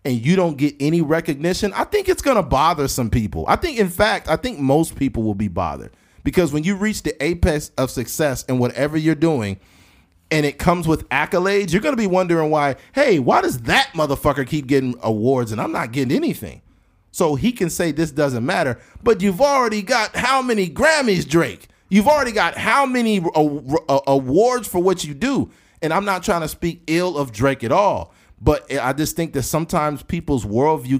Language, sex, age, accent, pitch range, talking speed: English, male, 40-59, American, 125-180 Hz, 205 wpm